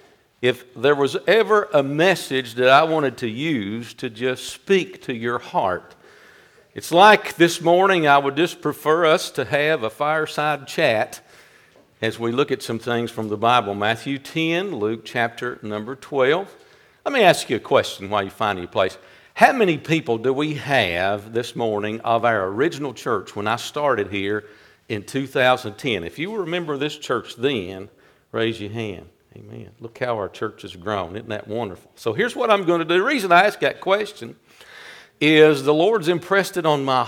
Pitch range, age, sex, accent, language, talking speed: 115-155 Hz, 50-69, male, American, English, 185 wpm